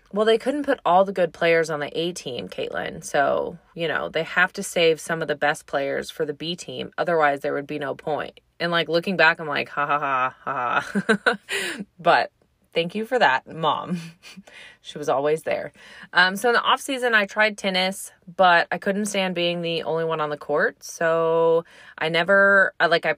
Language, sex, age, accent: English, female, 20-39, American